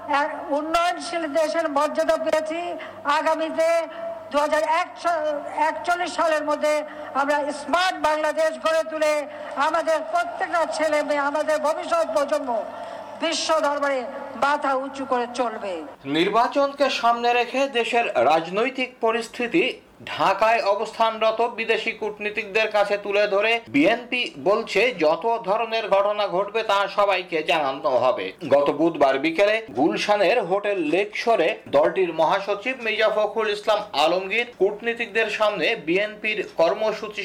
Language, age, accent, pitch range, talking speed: Bengali, 60-79, native, 205-305 Hz, 80 wpm